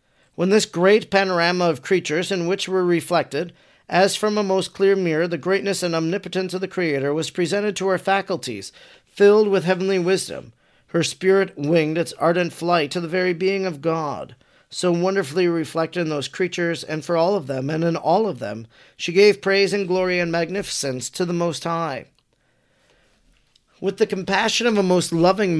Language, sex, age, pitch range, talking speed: English, male, 40-59, 160-195 Hz, 185 wpm